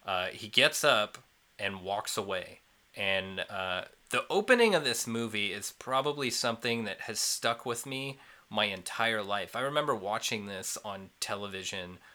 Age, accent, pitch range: 30-49, American, 95-115 Hz